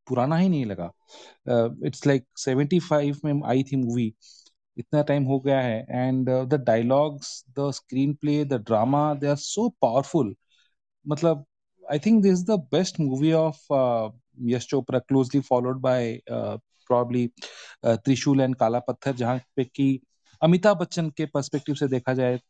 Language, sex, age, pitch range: Hindi, male, 30-49, 120-150 Hz